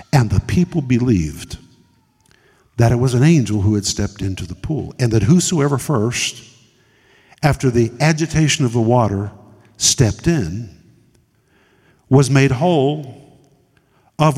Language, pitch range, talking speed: English, 115-155 Hz, 130 wpm